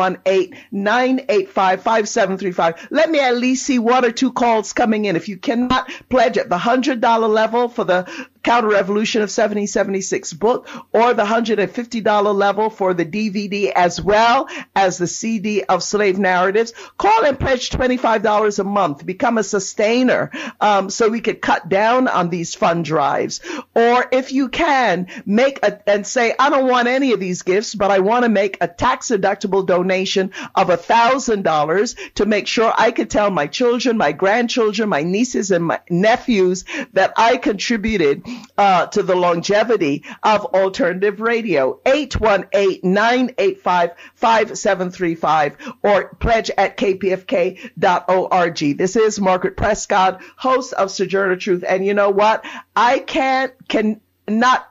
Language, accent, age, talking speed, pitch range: English, American, 50-69, 155 wpm, 190-240 Hz